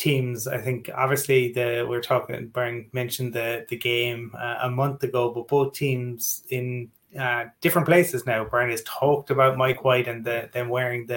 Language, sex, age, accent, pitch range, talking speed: English, male, 20-39, Irish, 120-140 Hz, 175 wpm